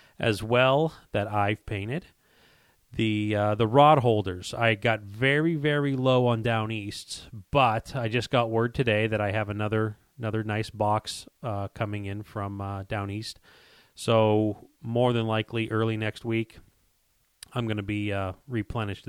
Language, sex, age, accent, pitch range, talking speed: English, male, 30-49, American, 100-115 Hz, 160 wpm